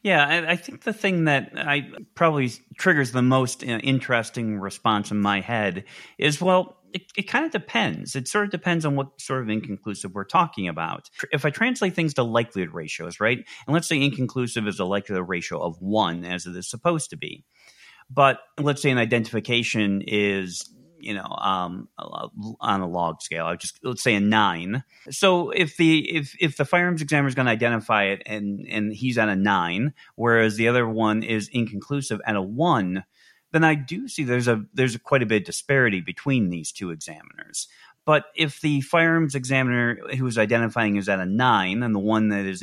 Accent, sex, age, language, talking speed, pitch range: American, male, 30-49, English, 200 wpm, 105-145 Hz